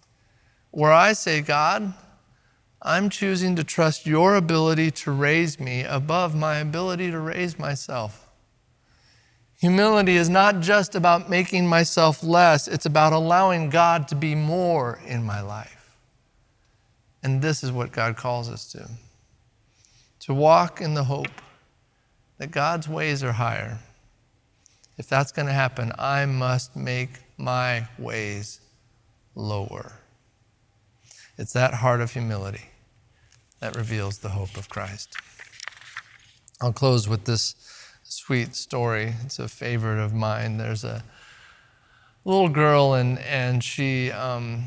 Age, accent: 50-69, American